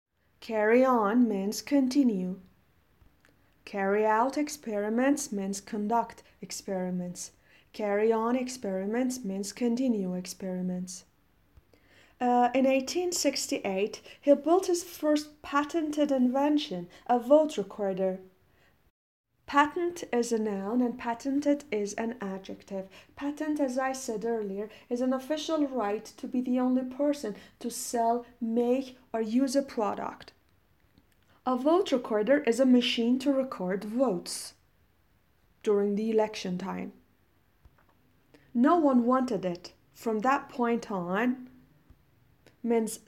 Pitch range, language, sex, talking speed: 190-255 Hz, Persian, female, 110 wpm